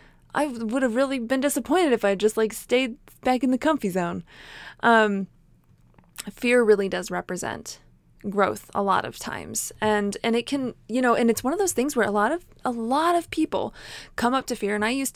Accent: American